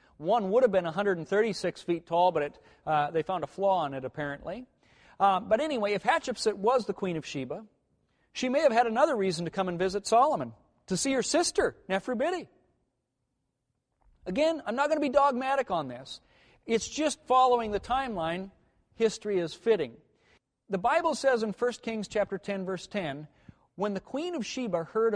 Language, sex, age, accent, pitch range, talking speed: English, male, 40-59, American, 180-255 Hz, 175 wpm